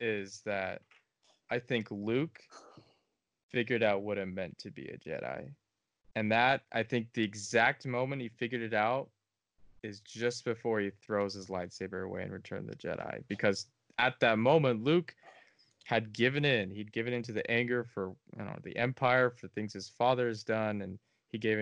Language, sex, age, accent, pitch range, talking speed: English, male, 20-39, American, 100-120 Hz, 180 wpm